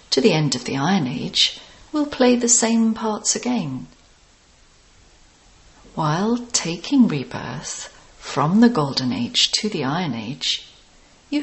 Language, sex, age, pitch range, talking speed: English, female, 40-59, 155-240 Hz, 130 wpm